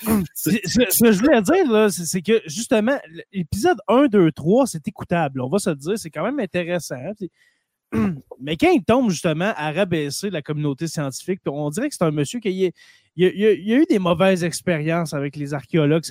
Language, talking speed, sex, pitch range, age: French, 210 wpm, male, 150-205 Hz, 20-39